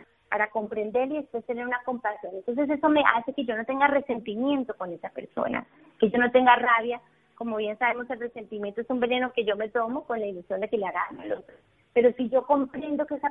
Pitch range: 225-270 Hz